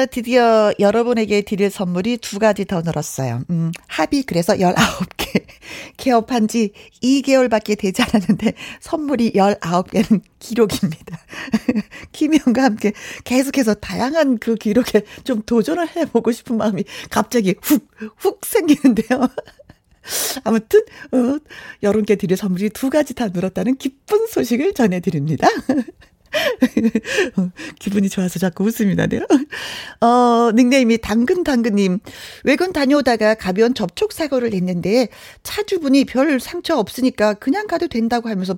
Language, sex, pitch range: Korean, female, 190-255 Hz